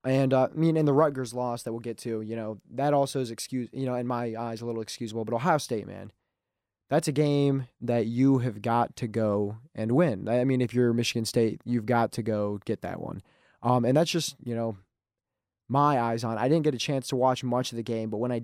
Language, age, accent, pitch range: English, 20-39, American, 110-135 Hz